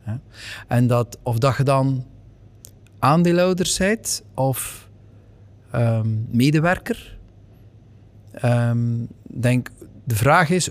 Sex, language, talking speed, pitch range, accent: male, Dutch, 95 wpm, 105-135 Hz, Dutch